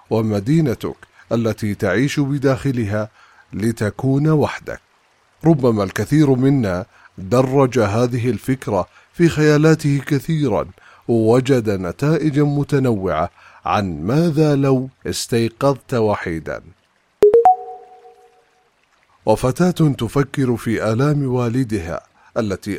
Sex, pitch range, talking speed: male, 110-145 Hz, 75 wpm